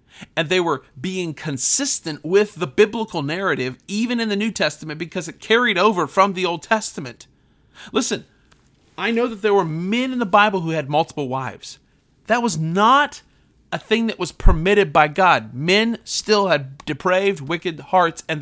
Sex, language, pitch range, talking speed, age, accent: male, English, 165-230 Hz, 175 wpm, 40-59, American